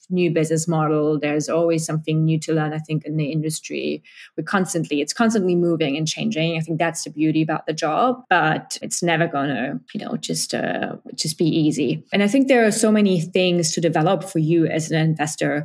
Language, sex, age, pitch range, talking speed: French, female, 20-39, 155-180 Hz, 210 wpm